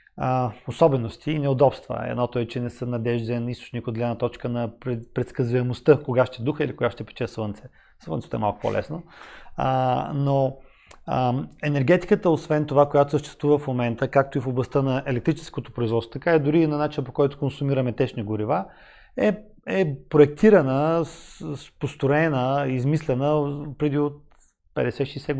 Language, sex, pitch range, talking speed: Bulgarian, male, 125-150 Hz, 155 wpm